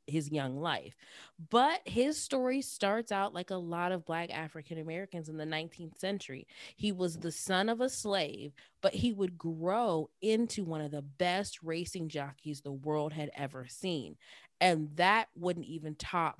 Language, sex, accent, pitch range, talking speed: English, female, American, 155-200 Hz, 170 wpm